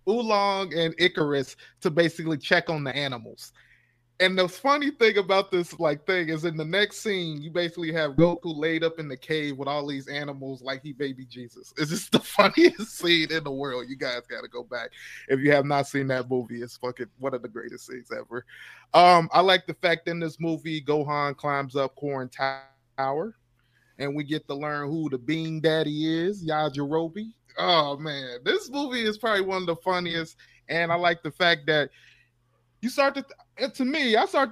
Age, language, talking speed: 20-39, English, 200 wpm